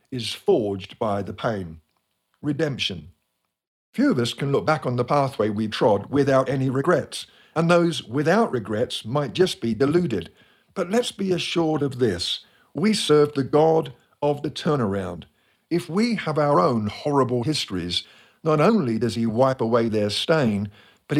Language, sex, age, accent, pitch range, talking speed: English, male, 50-69, British, 110-150 Hz, 160 wpm